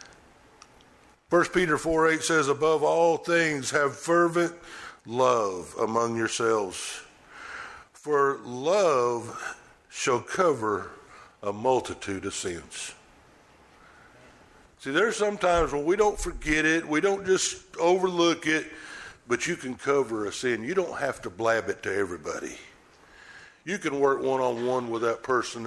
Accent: American